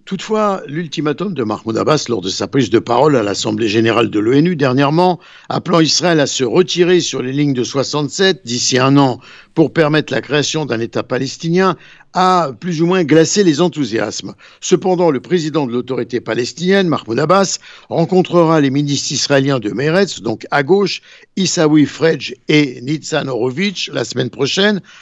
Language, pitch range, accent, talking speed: Italian, 135-175 Hz, French, 165 wpm